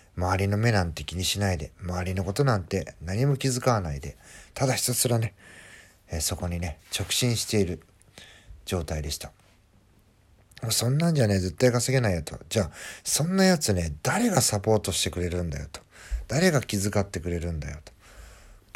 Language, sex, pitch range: Japanese, male, 85-115 Hz